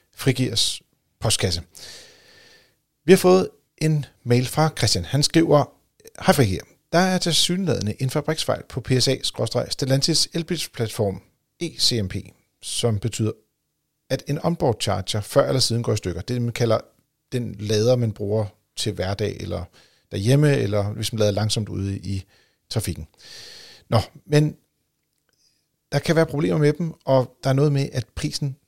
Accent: native